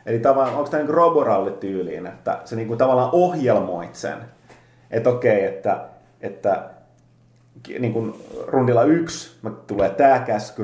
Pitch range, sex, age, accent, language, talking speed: 115-145 Hz, male, 30-49, native, Finnish, 130 wpm